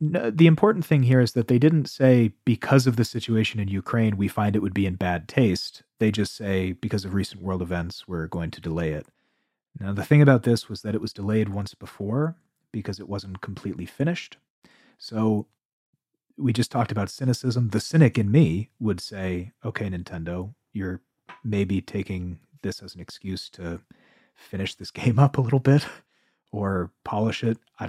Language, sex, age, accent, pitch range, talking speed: English, male, 30-49, American, 95-130 Hz, 185 wpm